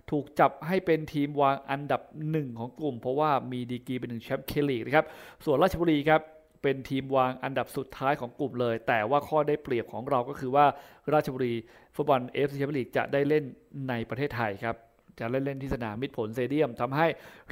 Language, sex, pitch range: Thai, male, 125-155 Hz